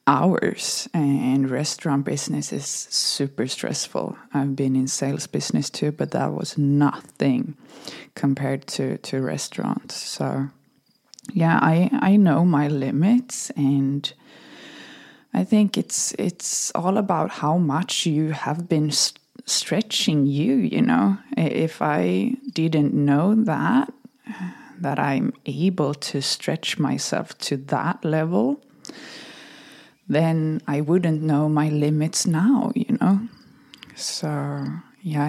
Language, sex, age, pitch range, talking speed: English, female, 20-39, 145-210 Hz, 115 wpm